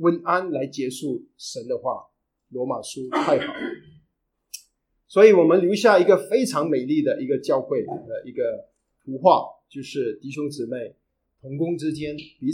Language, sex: Chinese, male